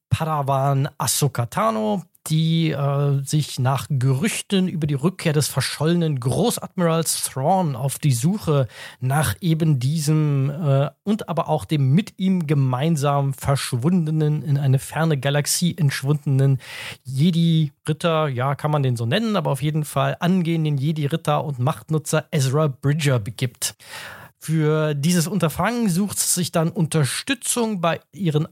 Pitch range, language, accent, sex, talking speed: 140-175 Hz, German, German, male, 130 wpm